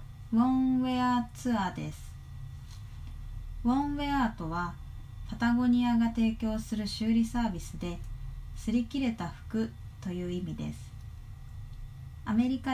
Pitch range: 150-235 Hz